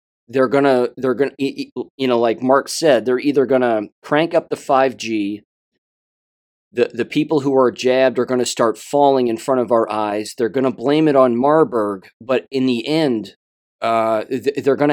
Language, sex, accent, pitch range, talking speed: English, male, American, 115-135 Hz, 195 wpm